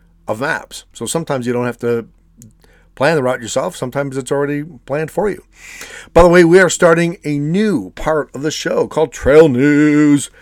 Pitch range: 120-160 Hz